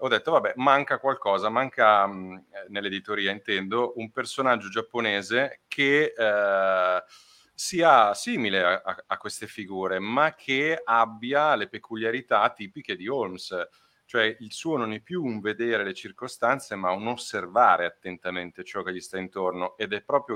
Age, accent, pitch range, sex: 40-59, native, 95-115 Hz, male